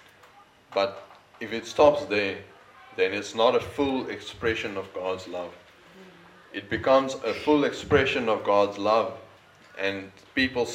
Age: 20-39